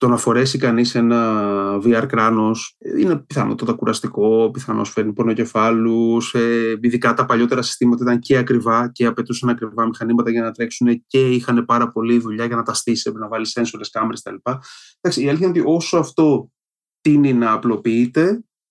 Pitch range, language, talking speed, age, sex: 110-130 Hz, Greek, 165 wpm, 30-49, male